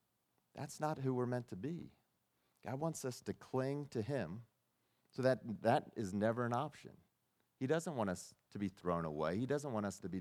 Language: English